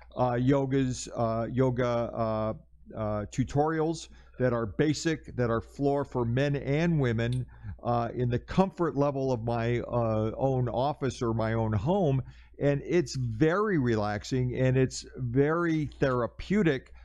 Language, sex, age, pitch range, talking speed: English, male, 50-69, 115-140 Hz, 135 wpm